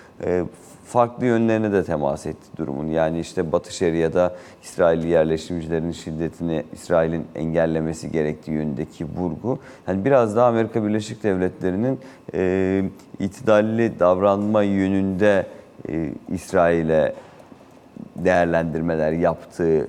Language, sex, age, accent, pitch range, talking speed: Turkish, male, 40-59, native, 80-105 Hz, 95 wpm